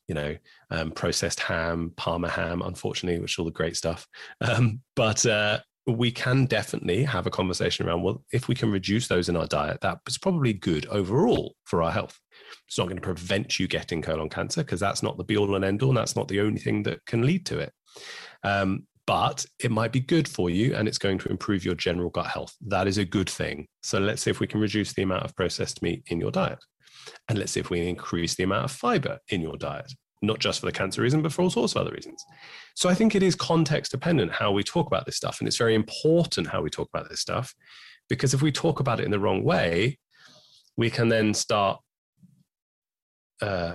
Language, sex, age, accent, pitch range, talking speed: English, male, 30-49, British, 90-130 Hz, 235 wpm